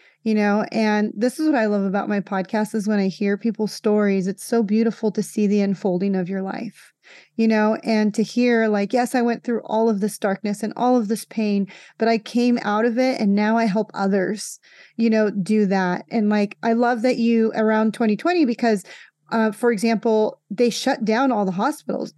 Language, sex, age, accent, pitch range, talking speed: English, female, 30-49, American, 210-240 Hz, 215 wpm